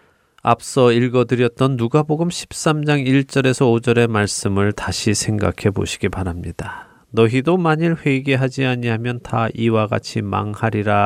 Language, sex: Korean, male